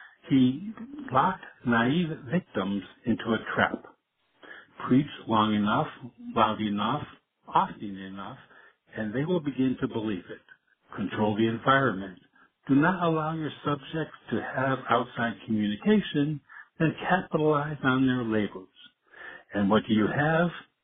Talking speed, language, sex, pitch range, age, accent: 125 wpm, English, male, 110-165 Hz, 60-79, American